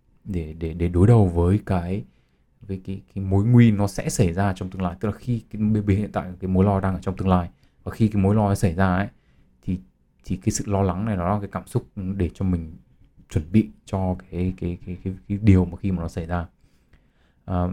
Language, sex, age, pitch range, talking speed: Vietnamese, male, 20-39, 90-105 Hz, 250 wpm